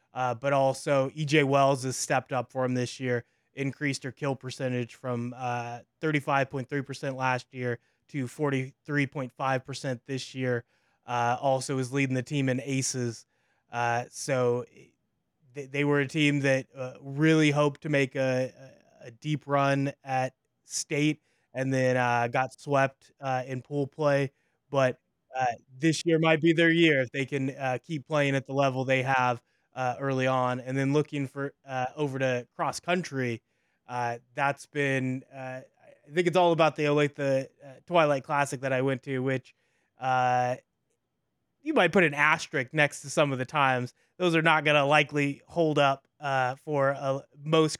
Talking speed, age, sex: 165 wpm, 20-39, male